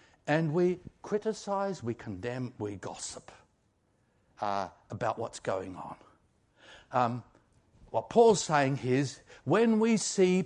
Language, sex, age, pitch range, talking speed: English, male, 60-79, 125-200 Hz, 115 wpm